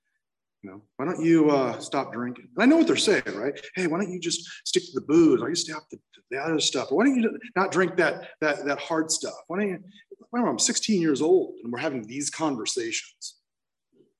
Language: English